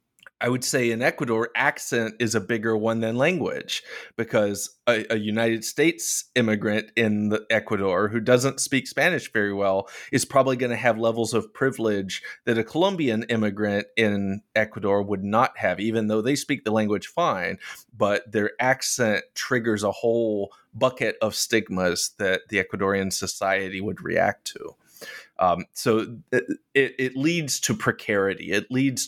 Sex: male